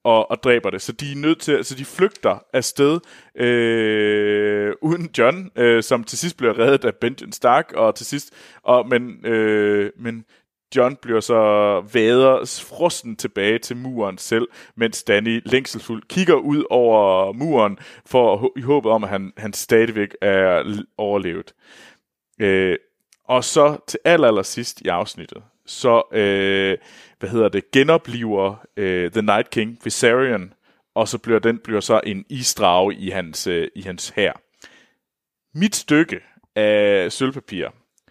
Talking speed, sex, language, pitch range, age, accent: 150 wpm, male, Danish, 105-135 Hz, 30-49, native